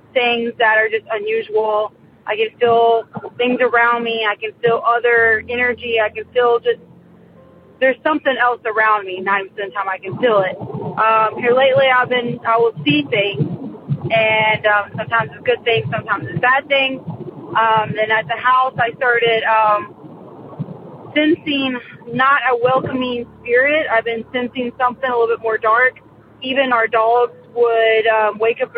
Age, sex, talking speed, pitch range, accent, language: 30-49, female, 175 wpm, 220-255 Hz, American, English